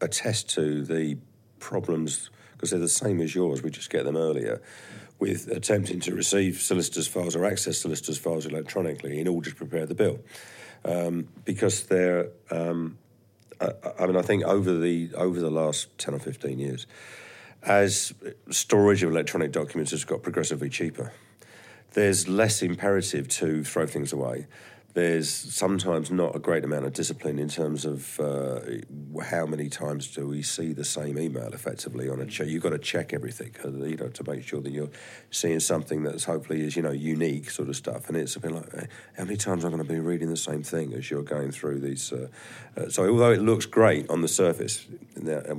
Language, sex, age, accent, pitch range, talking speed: English, male, 40-59, British, 75-90 Hz, 195 wpm